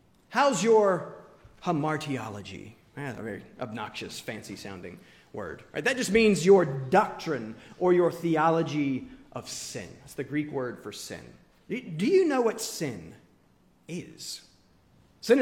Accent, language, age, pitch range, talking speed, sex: American, English, 30-49, 145-205 Hz, 130 wpm, male